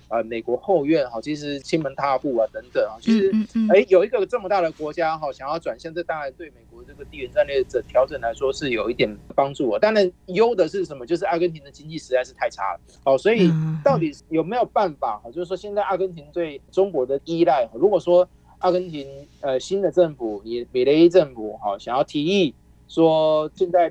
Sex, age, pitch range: male, 30-49, 130-185 Hz